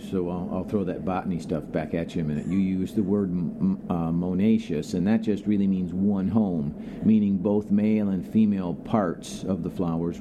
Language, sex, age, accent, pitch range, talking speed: English, male, 50-69, American, 90-110 Hz, 210 wpm